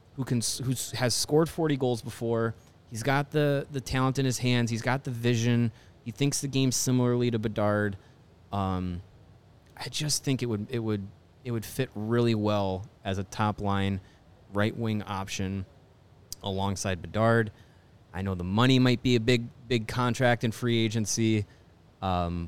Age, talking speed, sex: 20-39, 165 wpm, male